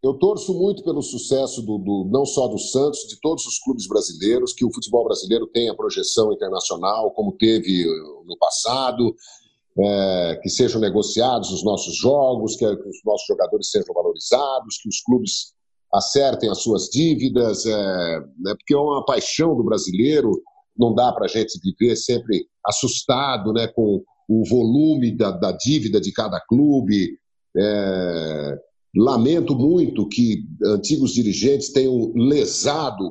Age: 50-69